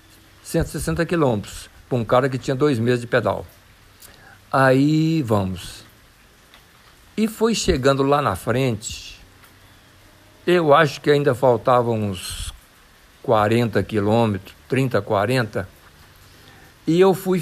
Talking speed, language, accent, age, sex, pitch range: 110 wpm, Portuguese, Brazilian, 60-79, male, 105-155 Hz